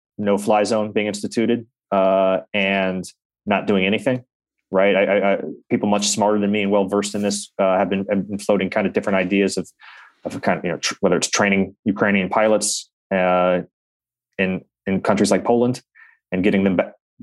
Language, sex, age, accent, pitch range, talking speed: English, male, 20-39, American, 90-105 Hz, 195 wpm